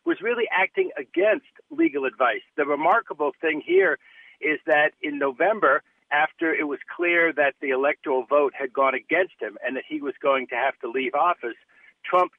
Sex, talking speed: male, 180 wpm